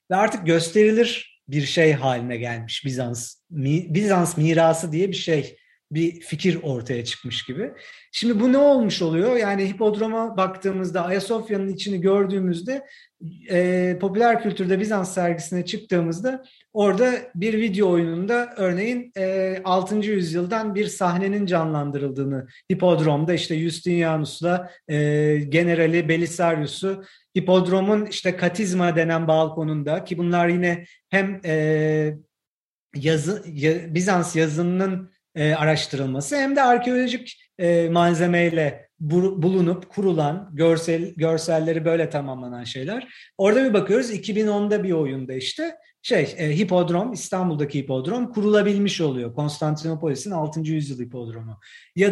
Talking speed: 115 wpm